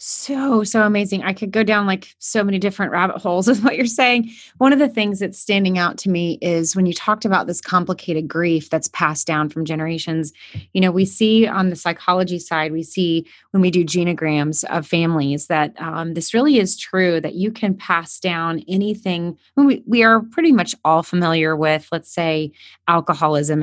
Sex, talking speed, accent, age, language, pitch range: female, 195 wpm, American, 30-49, English, 155-190 Hz